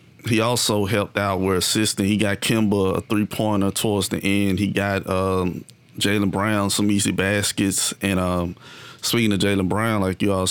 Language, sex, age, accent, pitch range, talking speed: English, male, 30-49, American, 95-105 Hz, 175 wpm